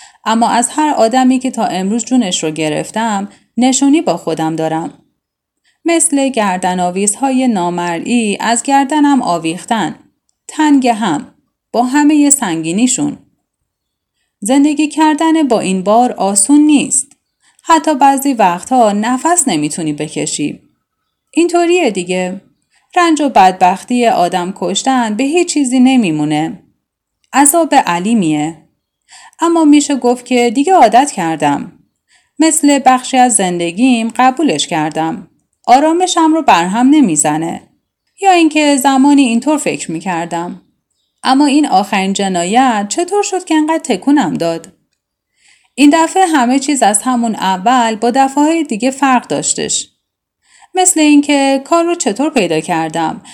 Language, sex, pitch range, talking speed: Persian, female, 185-295 Hz, 120 wpm